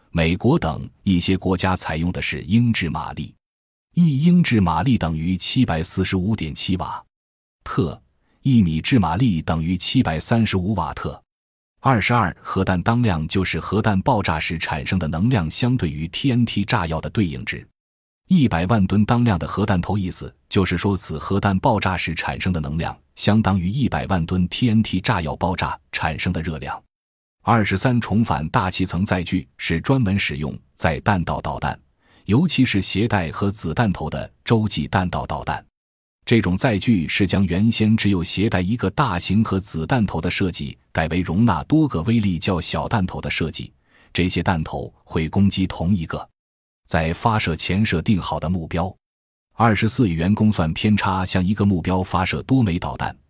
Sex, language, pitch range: male, Chinese, 80-110 Hz